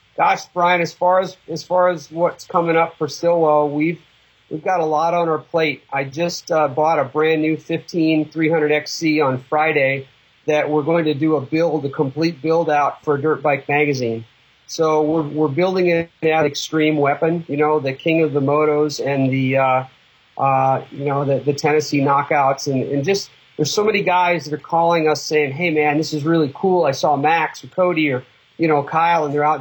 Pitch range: 140-165 Hz